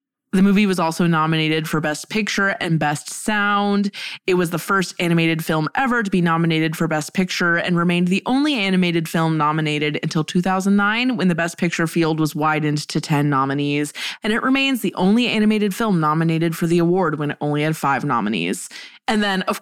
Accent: American